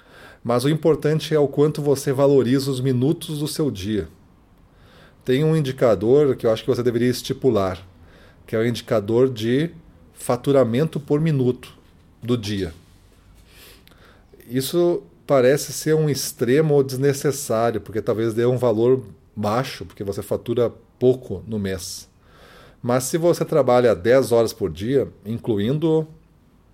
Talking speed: 135 wpm